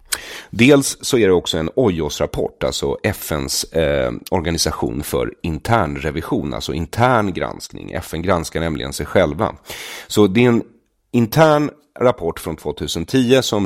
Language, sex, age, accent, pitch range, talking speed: English, male, 40-59, Swedish, 75-110 Hz, 140 wpm